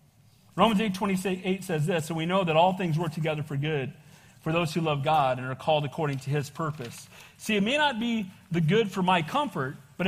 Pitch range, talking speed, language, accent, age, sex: 155-245 Hz, 230 wpm, English, American, 40-59, male